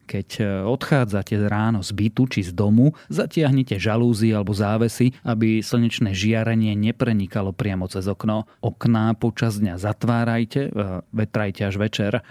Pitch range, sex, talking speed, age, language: 105-120 Hz, male, 125 wpm, 30-49, Slovak